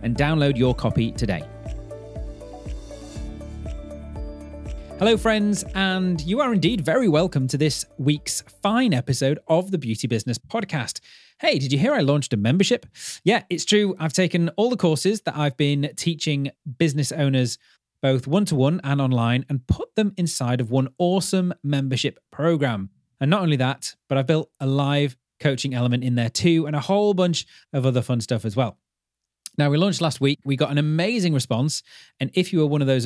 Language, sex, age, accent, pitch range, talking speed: English, male, 30-49, British, 125-165 Hz, 180 wpm